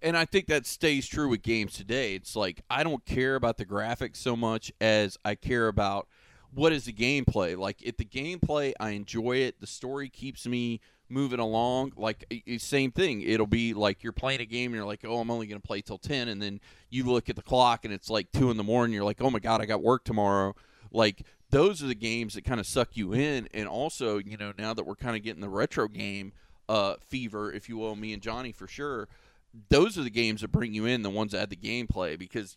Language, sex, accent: English, male, American